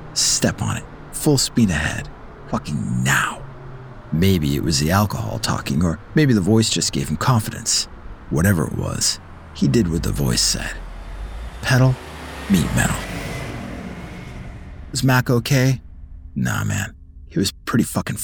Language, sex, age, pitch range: English, male, 50-69, 80-120 Hz